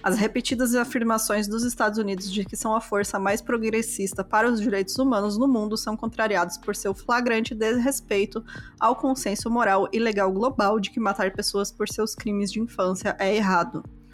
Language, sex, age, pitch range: Portuguese, female, 20-39, 195-230 Hz